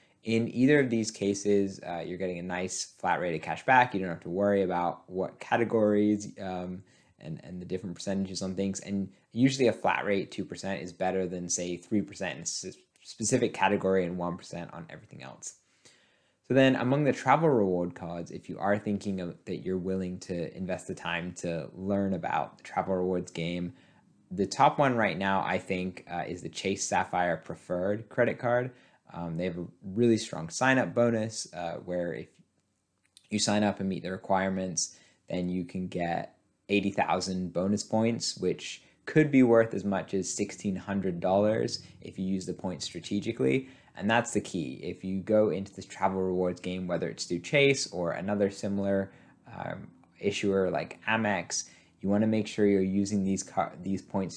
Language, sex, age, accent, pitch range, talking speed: English, male, 20-39, American, 90-105 Hz, 185 wpm